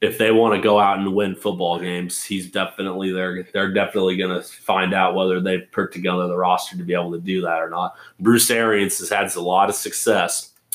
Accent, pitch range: American, 95-105 Hz